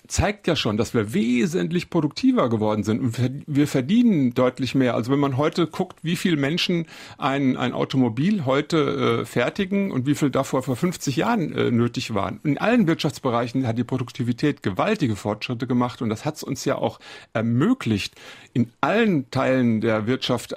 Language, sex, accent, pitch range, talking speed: German, male, German, 120-160 Hz, 175 wpm